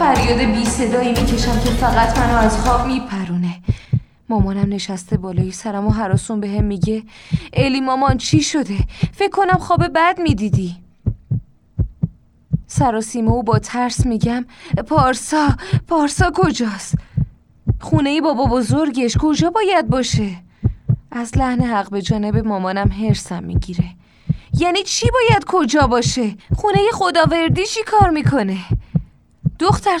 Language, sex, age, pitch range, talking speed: Persian, female, 20-39, 215-305 Hz, 125 wpm